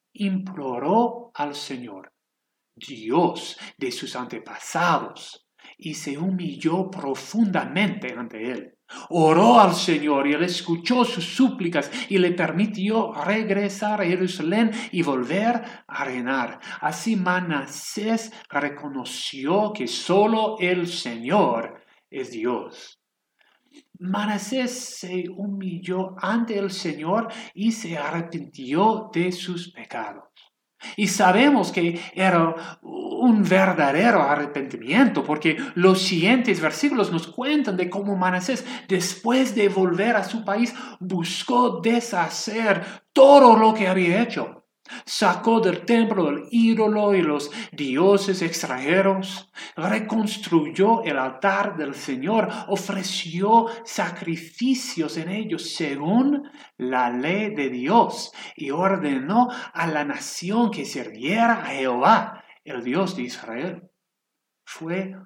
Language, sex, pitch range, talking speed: Spanish, male, 165-225 Hz, 110 wpm